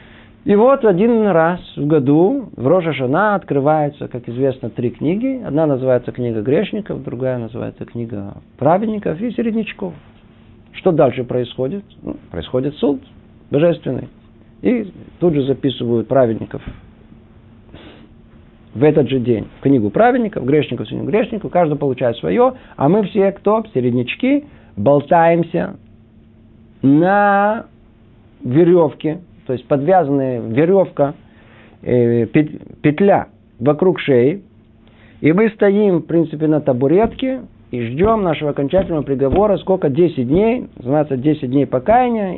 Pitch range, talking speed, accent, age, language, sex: 115-175 Hz, 120 wpm, native, 50-69, Russian, male